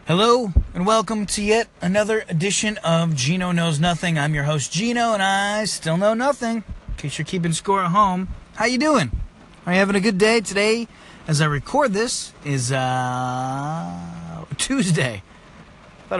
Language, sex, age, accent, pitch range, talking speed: English, male, 30-49, American, 140-190 Hz, 170 wpm